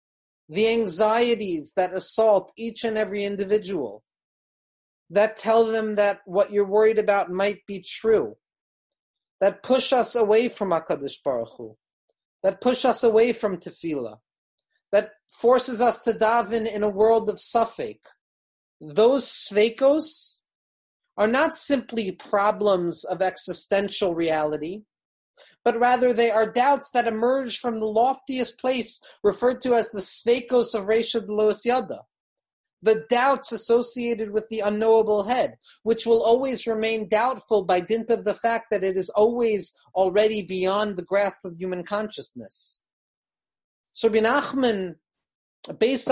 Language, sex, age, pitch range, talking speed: English, male, 40-59, 200-235 Hz, 135 wpm